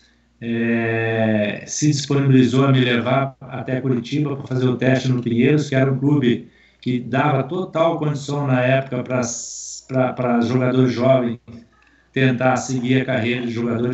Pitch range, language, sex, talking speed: 120-140 Hz, Portuguese, male, 150 wpm